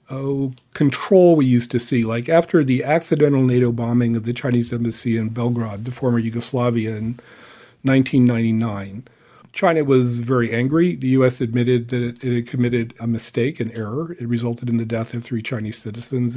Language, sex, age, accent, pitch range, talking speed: English, male, 50-69, American, 115-130 Hz, 170 wpm